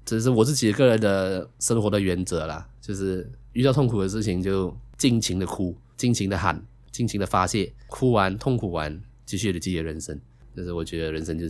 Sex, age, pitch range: male, 20-39, 80-110 Hz